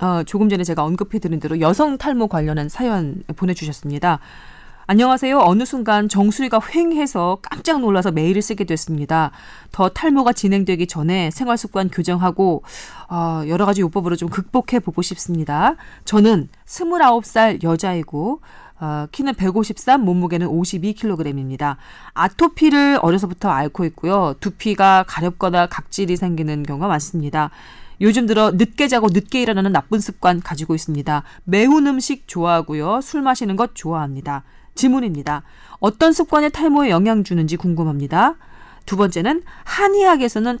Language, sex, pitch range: Korean, female, 165-245 Hz